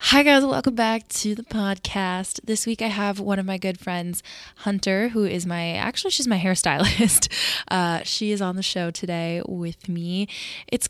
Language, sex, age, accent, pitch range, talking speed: English, female, 20-39, American, 170-205 Hz, 185 wpm